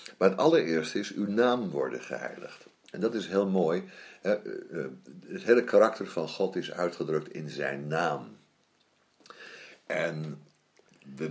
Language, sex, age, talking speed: Dutch, male, 60-79, 135 wpm